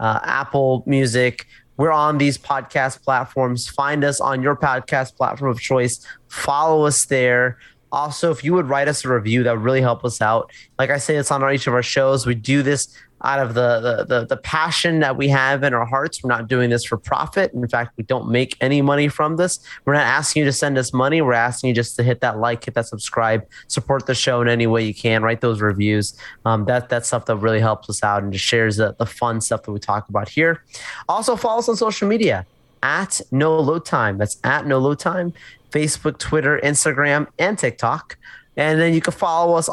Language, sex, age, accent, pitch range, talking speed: English, male, 30-49, American, 115-150 Hz, 225 wpm